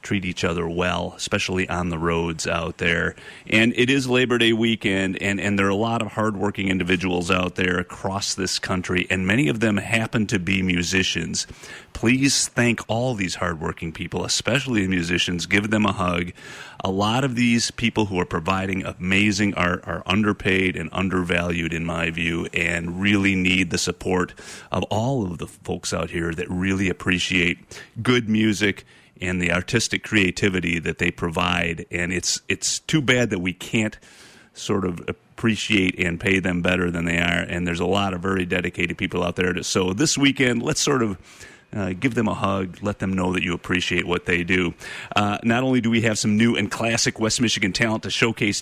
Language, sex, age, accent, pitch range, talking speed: English, male, 30-49, American, 90-110 Hz, 195 wpm